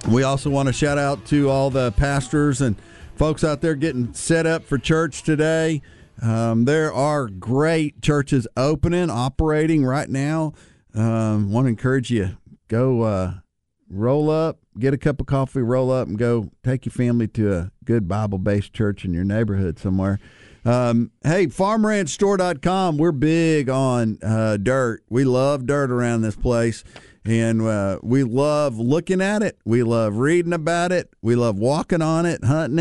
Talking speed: 170 wpm